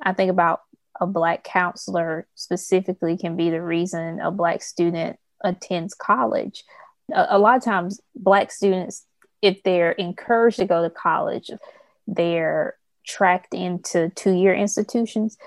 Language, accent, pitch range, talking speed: English, American, 175-195 Hz, 135 wpm